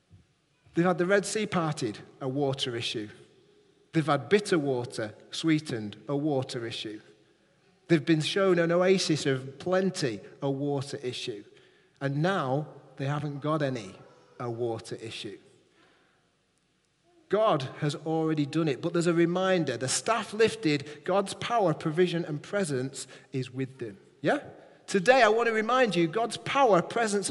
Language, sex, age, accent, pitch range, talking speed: English, male, 30-49, British, 140-185 Hz, 145 wpm